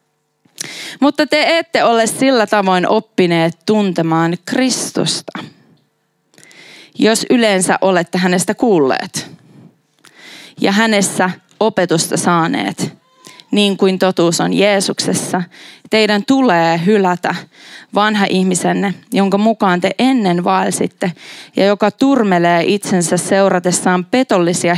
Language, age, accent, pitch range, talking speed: Finnish, 20-39, native, 185-245 Hz, 95 wpm